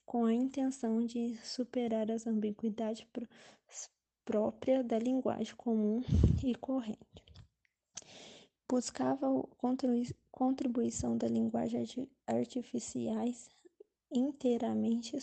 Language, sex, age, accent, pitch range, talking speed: Portuguese, female, 20-39, Brazilian, 220-250 Hz, 90 wpm